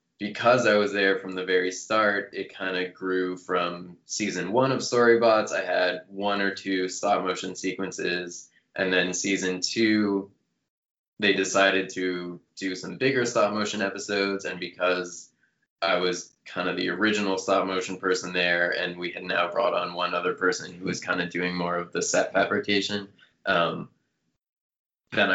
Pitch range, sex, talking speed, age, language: 90-110 Hz, male, 160 wpm, 20-39, English